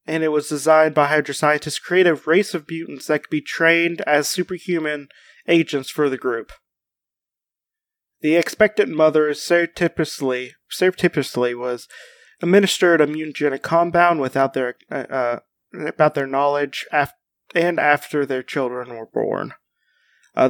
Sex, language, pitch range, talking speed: male, English, 145-175 Hz, 125 wpm